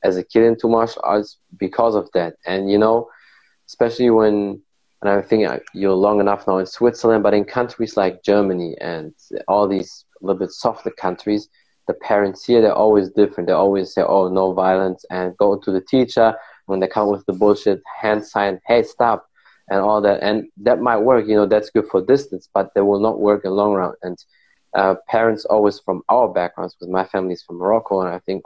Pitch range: 95-105 Hz